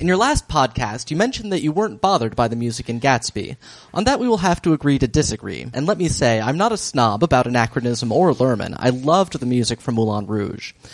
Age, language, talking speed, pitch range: 30-49, English, 235 wpm, 115-175 Hz